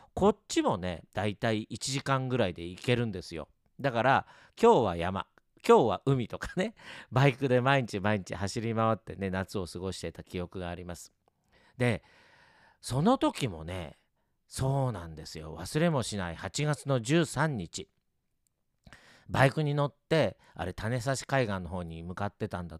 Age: 40-59